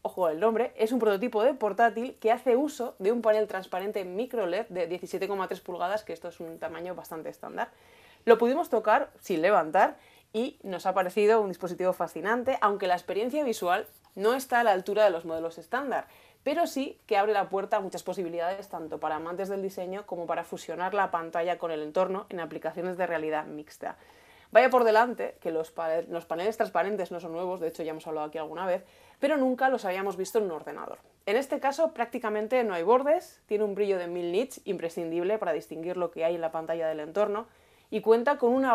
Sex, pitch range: female, 170-230 Hz